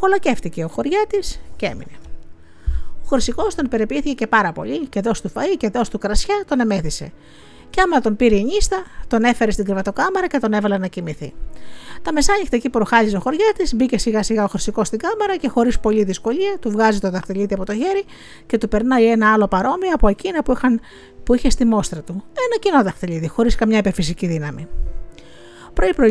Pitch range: 190-255 Hz